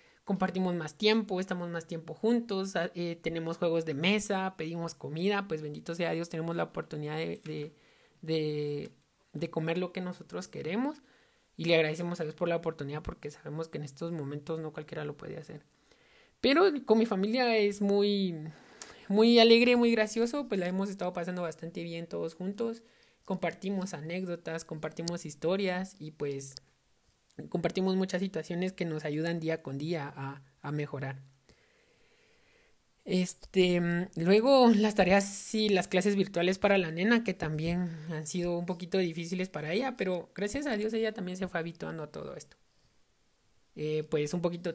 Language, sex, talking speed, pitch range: Spanish, male, 160 wpm, 160-195 Hz